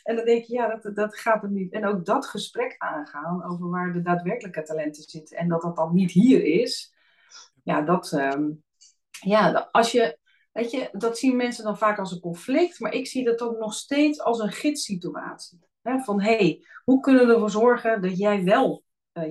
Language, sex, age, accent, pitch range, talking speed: Dutch, female, 40-59, Dutch, 170-225 Hz, 210 wpm